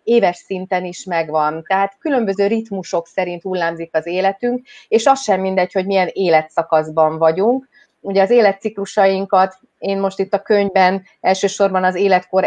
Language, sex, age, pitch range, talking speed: Hungarian, female, 30-49, 180-205 Hz, 145 wpm